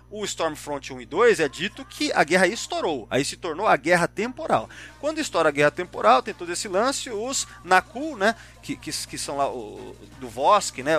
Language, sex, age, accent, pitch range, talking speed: Portuguese, male, 30-49, Brazilian, 165-270 Hz, 215 wpm